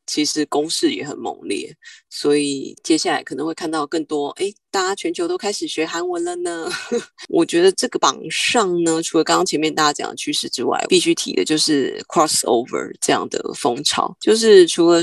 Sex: female